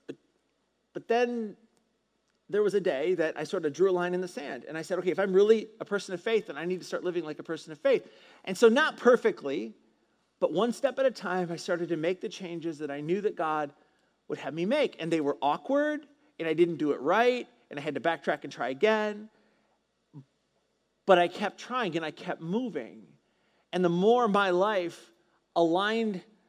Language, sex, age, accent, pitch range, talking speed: English, male, 40-59, American, 165-215 Hz, 215 wpm